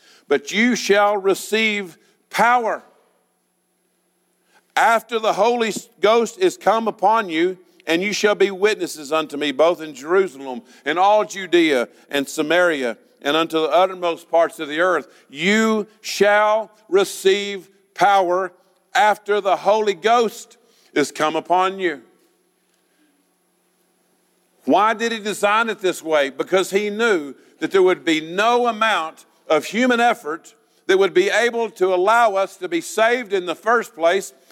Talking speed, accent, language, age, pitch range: 140 wpm, American, English, 50-69, 170-220 Hz